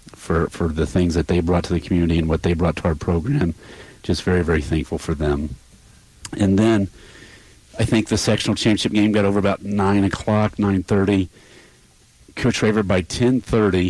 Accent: American